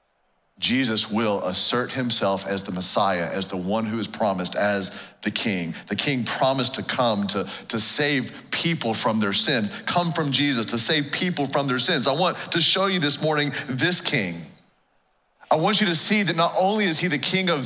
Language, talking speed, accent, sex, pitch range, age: English, 200 wpm, American, male, 110-165 Hz, 40-59